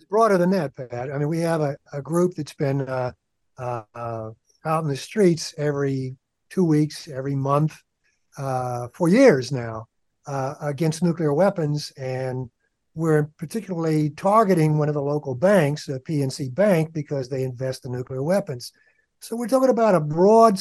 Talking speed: 160 wpm